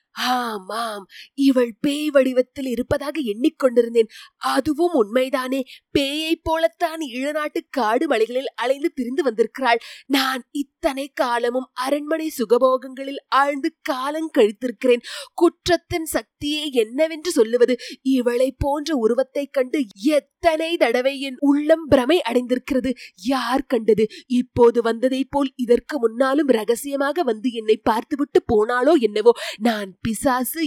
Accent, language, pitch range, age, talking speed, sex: native, Tamil, 235-310 Hz, 20-39, 110 wpm, female